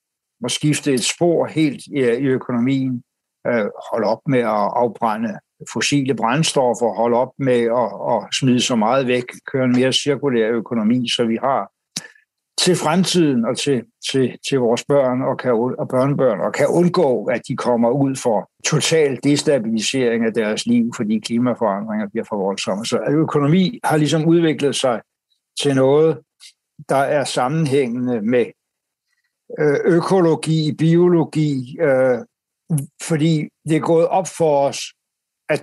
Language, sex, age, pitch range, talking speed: Danish, male, 60-79, 130-160 Hz, 140 wpm